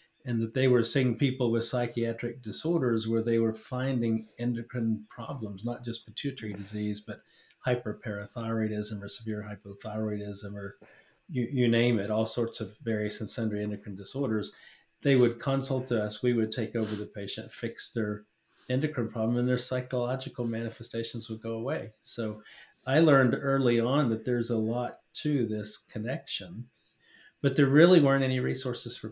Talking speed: 160 wpm